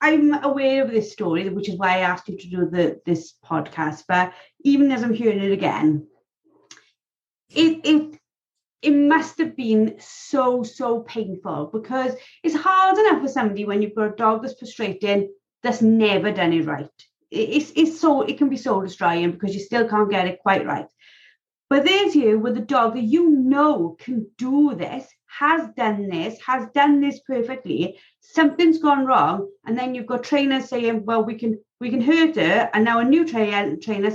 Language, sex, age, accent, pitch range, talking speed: English, female, 30-49, British, 205-285 Hz, 190 wpm